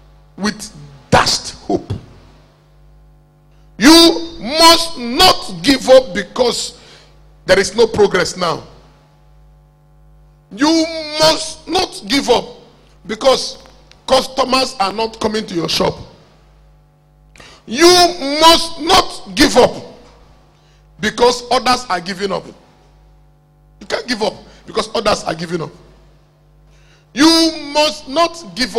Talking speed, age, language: 105 wpm, 50-69, English